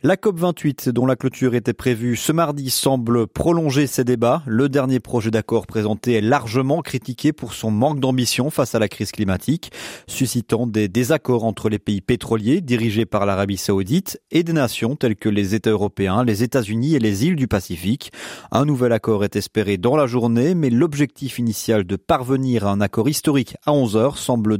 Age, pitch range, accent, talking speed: 30-49, 110-140 Hz, French, 190 wpm